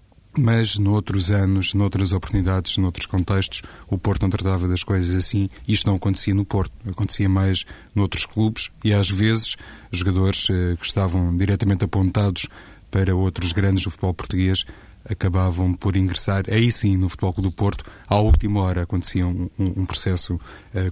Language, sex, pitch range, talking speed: Portuguese, male, 90-100 Hz, 160 wpm